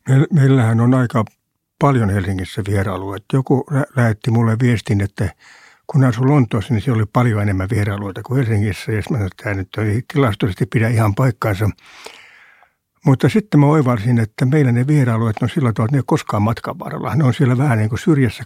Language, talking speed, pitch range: Finnish, 175 wpm, 110-140 Hz